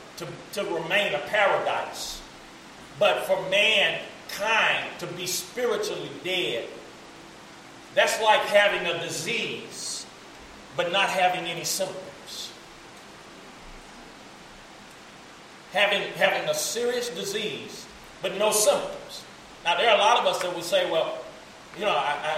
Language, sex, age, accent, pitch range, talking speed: English, male, 40-59, American, 195-295 Hz, 115 wpm